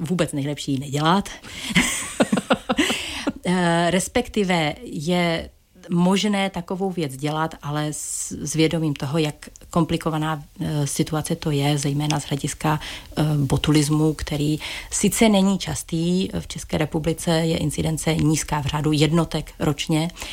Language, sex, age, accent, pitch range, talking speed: Czech, female, 40-59, native, 150-170 Hz, 110 wpm